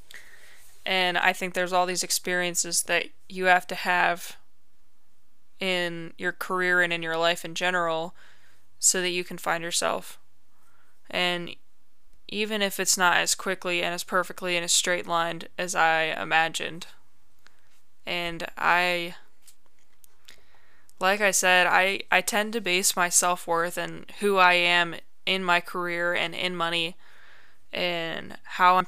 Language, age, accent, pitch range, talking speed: English, 20-39, American, 170-185 Hz, 140 wpm